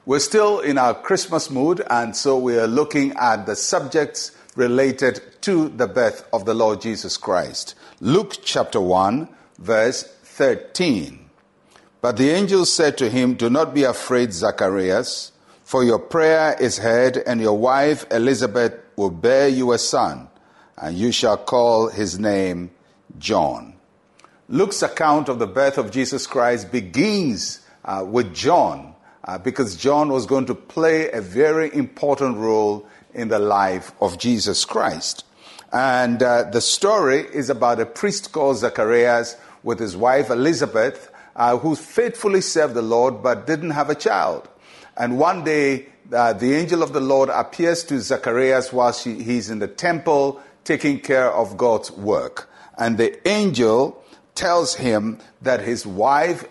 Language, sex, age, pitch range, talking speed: English, male, 50-69, 115-145 Hz, 155 wpm